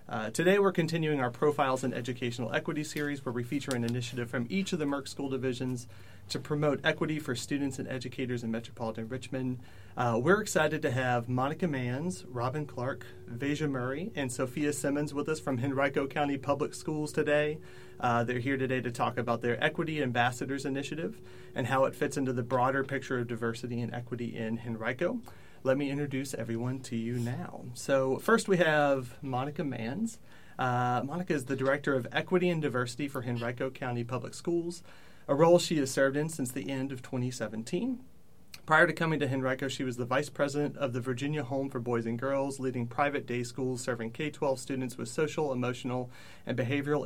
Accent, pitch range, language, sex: American, 120-145 Hz, English, male